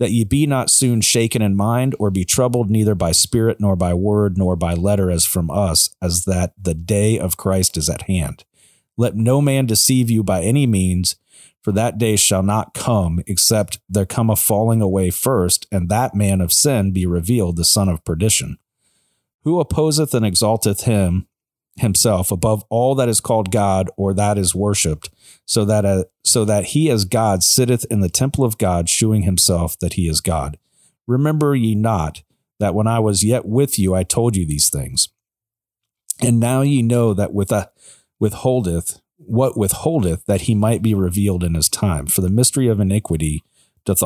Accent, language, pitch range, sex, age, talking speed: American, English, 90-115 Hz, male, 40-59, 190 wpm